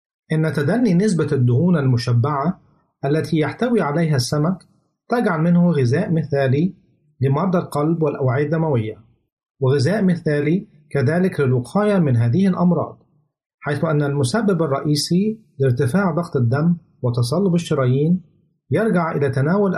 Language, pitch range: Arabic, 140-175 Hz